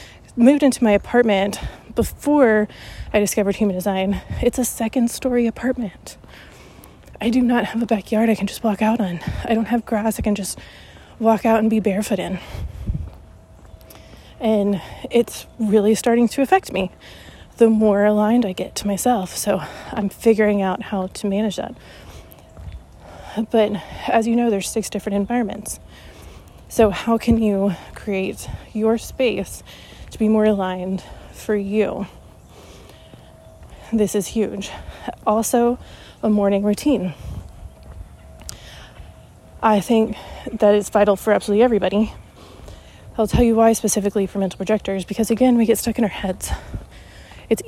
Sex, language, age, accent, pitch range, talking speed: female, English, 20-39, American, 195-230 Hz, 145 wpm